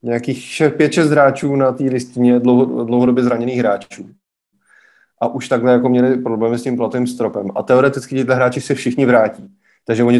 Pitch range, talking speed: 110-125 Hz, 170 wpm